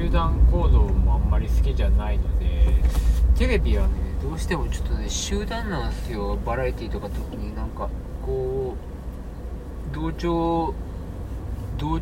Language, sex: Japanese, male